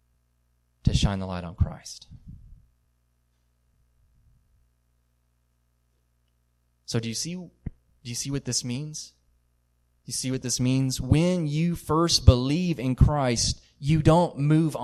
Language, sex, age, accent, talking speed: English, male, 30-49, American, 125 wpm